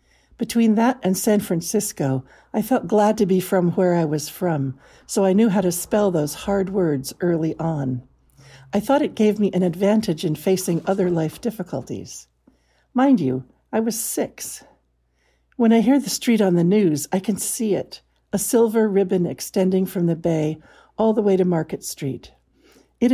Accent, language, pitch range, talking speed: American, English, 150-210 Hz, 180 wpm